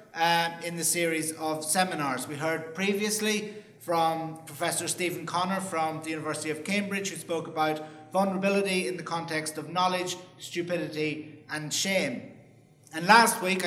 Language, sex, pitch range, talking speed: English, male, 165-200 Hz, 145 wpm